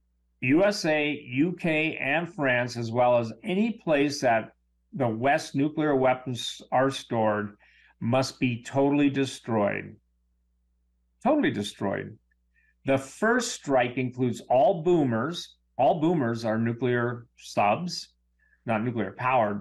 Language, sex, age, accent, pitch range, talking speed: English, male, 50-69, American, 105-150 Hz, 110 wpm